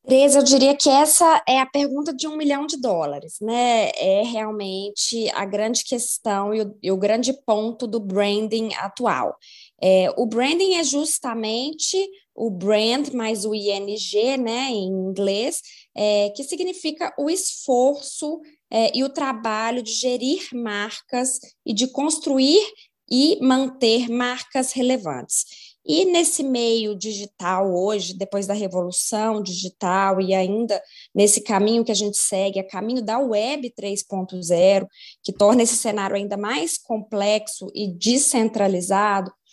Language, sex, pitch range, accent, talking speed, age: Portuguese, female, 200-265 Hz, Brazilian, 130 wpm, 20-39